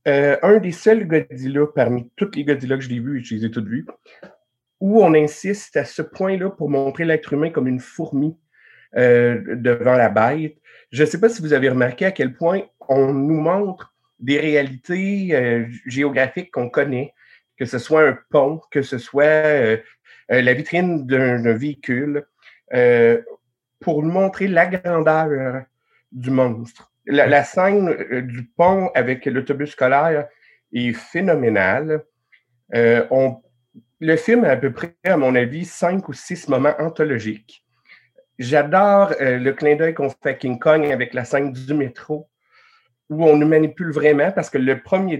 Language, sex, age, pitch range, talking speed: French, male, 50-69, 130-175 Hz, 175 wpm